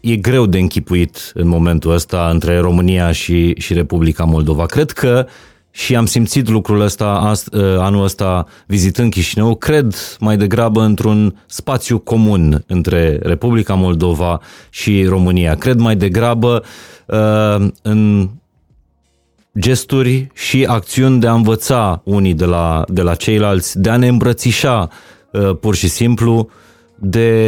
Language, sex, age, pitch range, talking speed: Romanian, male, 30-49, 90-115 Hz, 125 wpm